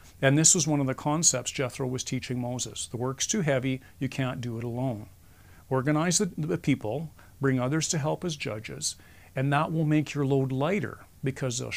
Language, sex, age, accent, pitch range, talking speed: English, male, 50-69, American, 125-155 Hz, 200 wpm